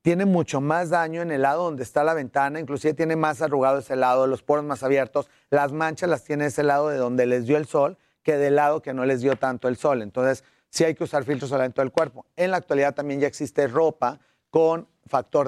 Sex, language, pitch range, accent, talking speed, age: male, Spanish, 135-155 Hz, Mexican, 245 wpm, 40-59